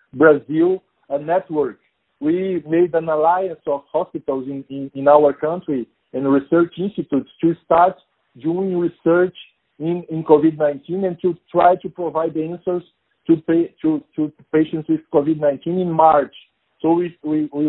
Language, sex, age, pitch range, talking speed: English, male, 50-69, 155-185 Hz, 145 wpm